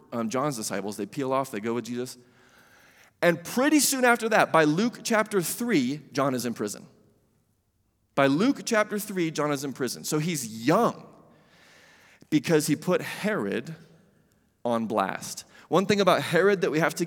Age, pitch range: 30-49, 130-175 Hz